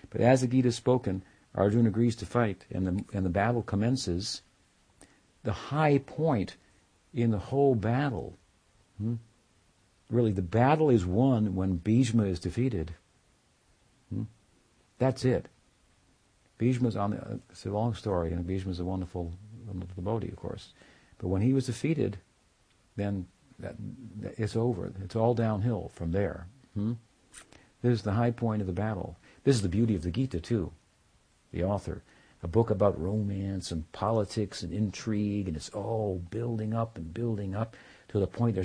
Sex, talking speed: male, 165 wpm